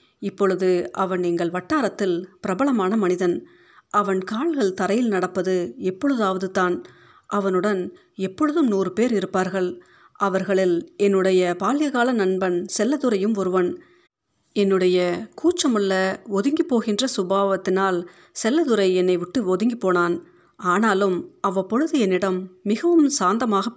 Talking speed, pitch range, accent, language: 90 wpm, 185-225 Hz, native, Tamil